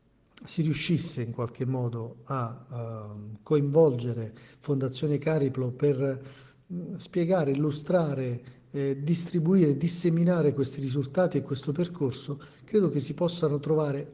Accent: native